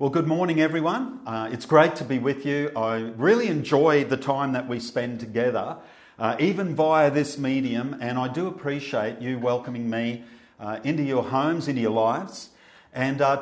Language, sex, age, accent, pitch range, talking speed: English, male, 50-69, Australian, 125-165 Hz, 185 wpm